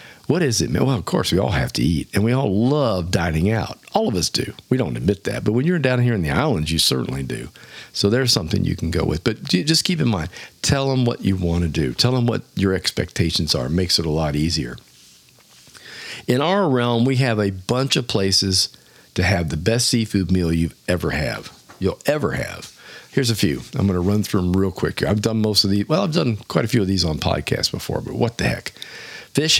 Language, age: English, 50-69